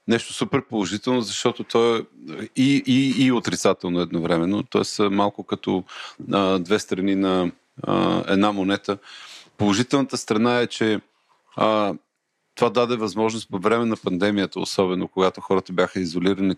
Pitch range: 95-110 Hz